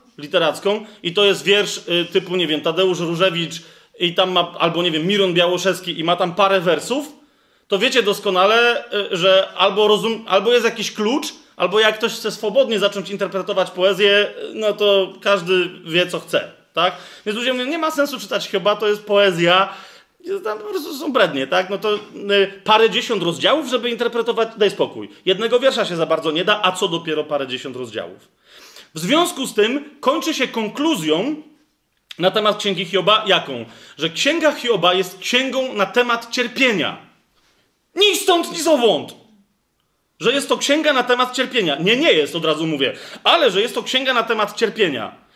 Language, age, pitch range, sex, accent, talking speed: Polish, 30-49, 185-245 Hz, male, native, 170 wpm